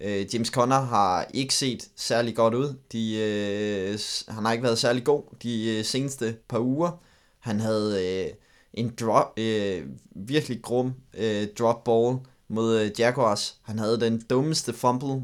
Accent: native